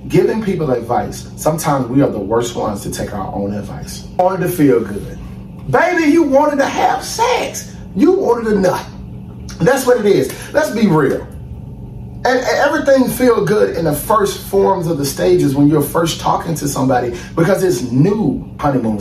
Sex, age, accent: male, 30-49, American